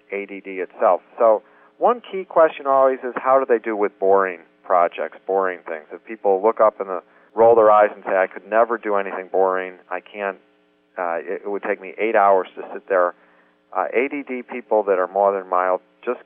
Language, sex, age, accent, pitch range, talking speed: English, male, 50-69, American, 90-125 Hz, 200 wpm